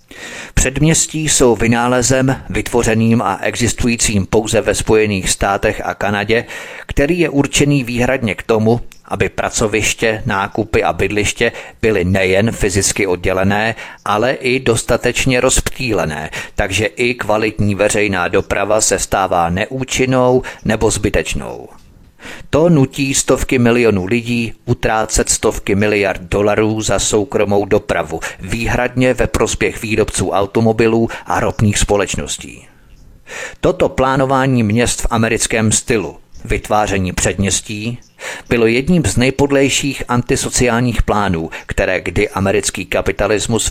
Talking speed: 110 wpm